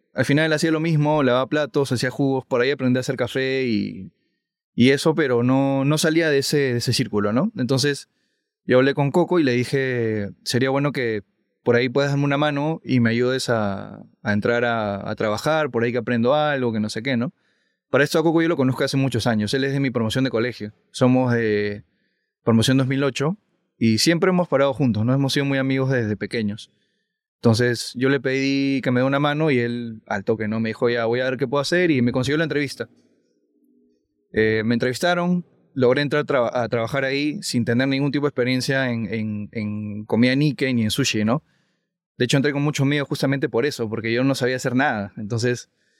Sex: male